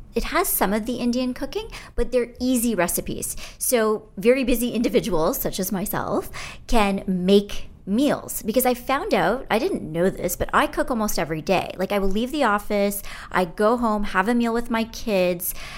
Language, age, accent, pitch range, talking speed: English, 30-49, American, 180-245 Hz, 190 wpm